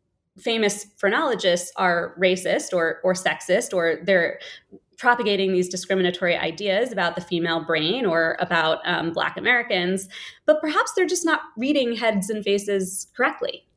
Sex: female